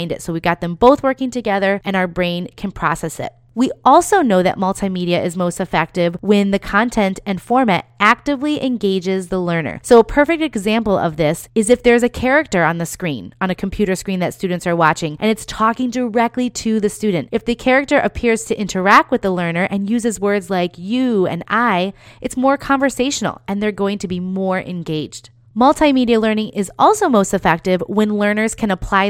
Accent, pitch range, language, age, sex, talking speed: American, 185-235 Hz, English, 30-49, female, 200 wpm